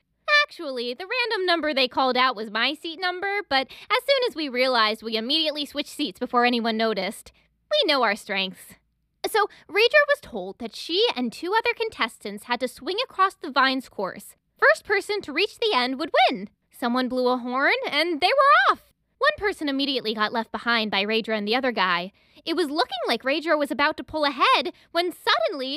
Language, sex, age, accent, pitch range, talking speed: English, female, 20-39, American, 250-400 Hz, 200 wpm